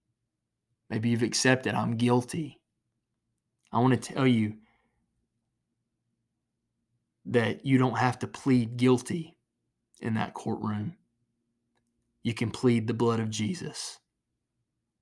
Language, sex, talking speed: English, male, 110 wpm